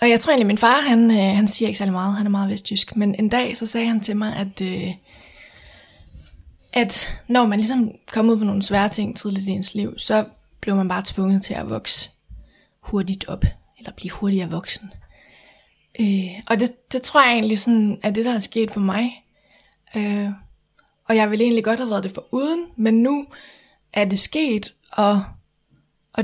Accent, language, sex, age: native, Danish, female, 20-39